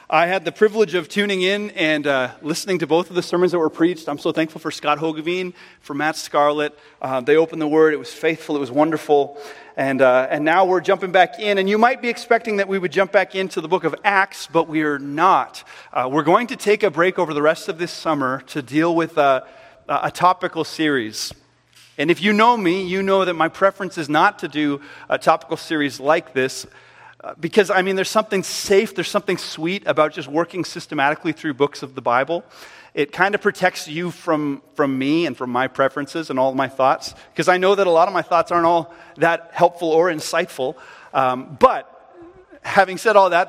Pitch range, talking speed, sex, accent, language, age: 150-195 Hz, 220 wpm, male, American, English, 30-49